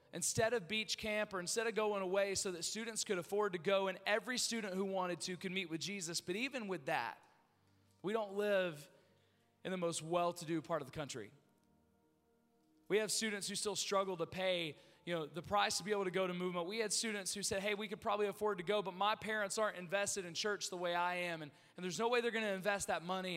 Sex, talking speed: male, 240 wpm